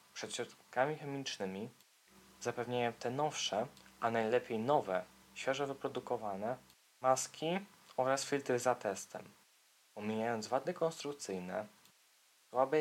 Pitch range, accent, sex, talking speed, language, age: 110-135 Hz, native, male, 95 wpm, Polish, 20-39